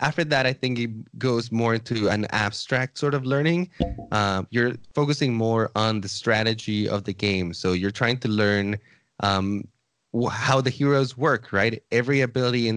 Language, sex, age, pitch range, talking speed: English, male, 20-39, 100-120 Hz, 175 wpm